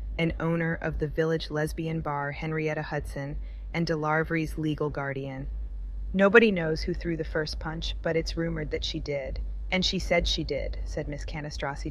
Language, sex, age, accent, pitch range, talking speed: English, female, 30-49, American, 150-175 Hz, 170 wpm